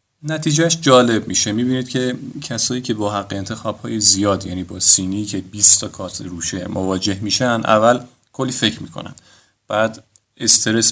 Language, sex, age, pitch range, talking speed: Persian, male, 30-49, 100-130 Hz, 155 wpm